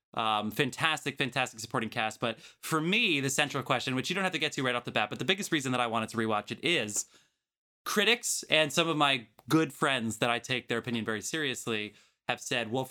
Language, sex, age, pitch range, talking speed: English, male, 20-39, 115-145 Hz, 230 wpm